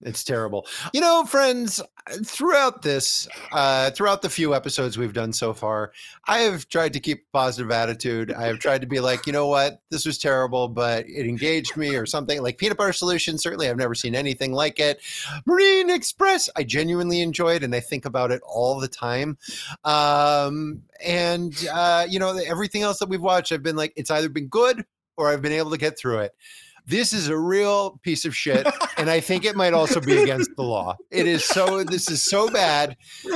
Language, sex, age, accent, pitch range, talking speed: English, male, 30-49, American, 140-195 Hz, 205 wpm